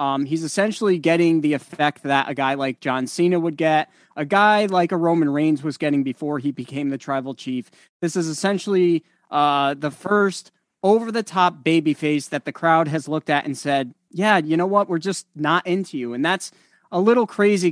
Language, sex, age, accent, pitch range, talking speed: English, male, 30-49, American, 140-175 Hz, 205 wpm